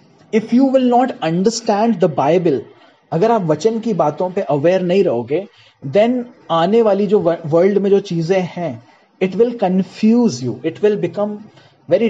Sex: male